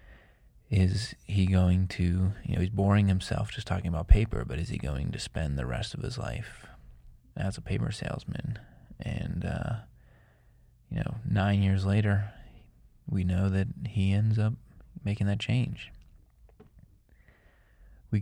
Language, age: English, 20-39